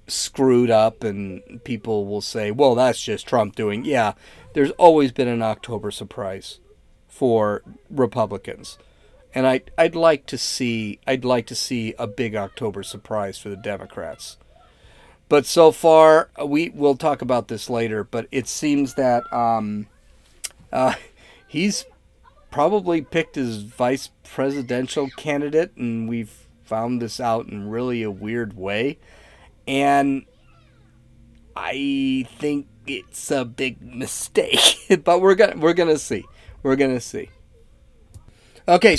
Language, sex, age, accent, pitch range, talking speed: English, male, 40-59, American, 110-145 Hz, 135 wpm